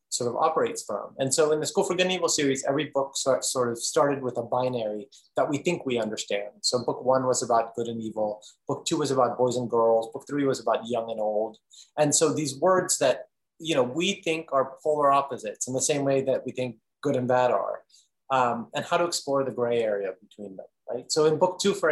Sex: male